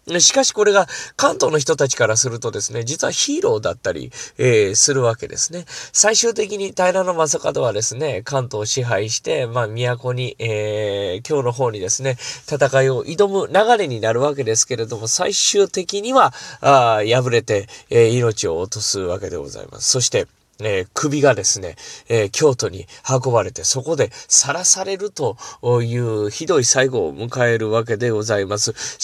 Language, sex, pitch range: Japanese, male, 120-200 Hz